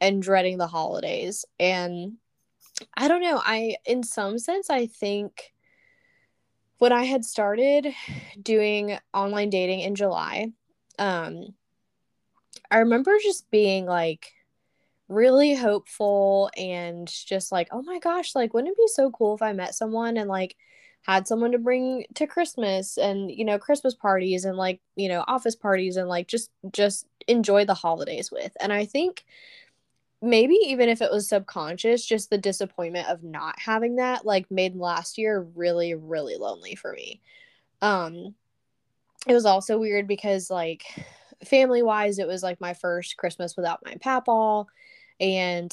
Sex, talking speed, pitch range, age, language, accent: female, 155 wpm, 185-240 Hz, 10-29, English, American